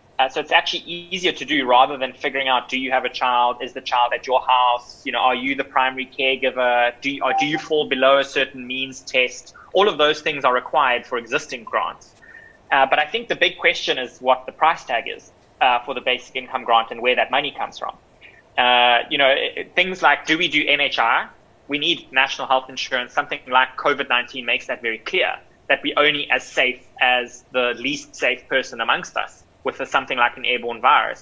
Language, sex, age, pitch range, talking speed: English, male, 20-39, 125-150 Hz, 220 wpm